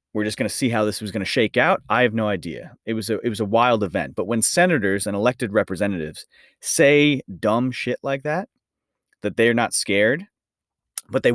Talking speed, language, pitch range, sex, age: 205 wpm, English, 105-140 Hz, male, 30-49